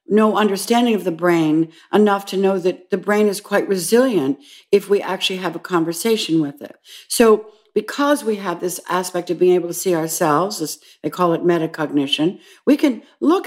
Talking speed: 185 wpm